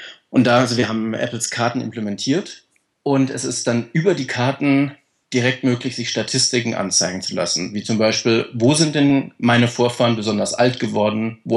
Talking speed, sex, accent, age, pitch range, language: 175 wpm, male, German, 30-49, 105-120 Hz, German